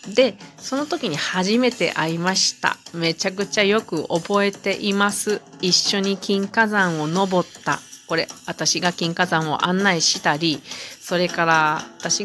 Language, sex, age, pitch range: Japanese, female, 40-59, 160-215 Hz